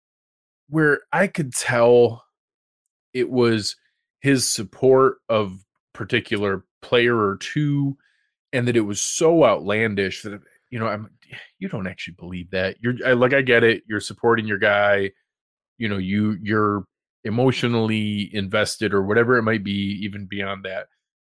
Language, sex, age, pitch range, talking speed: English, male, 20-39, 100-120 Hz, 145 wpm